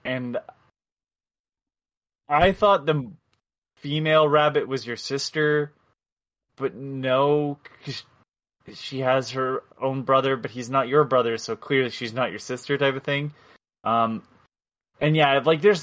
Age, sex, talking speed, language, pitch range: 20-39, male, 135 wpm, English, 110-140 Hz